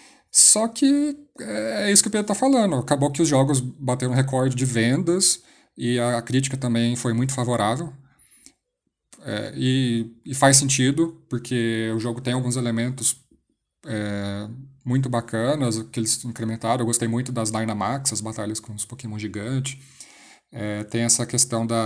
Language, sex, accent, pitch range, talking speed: Portuguese, male, Brazilian, 115-135 Hz, 150 wpm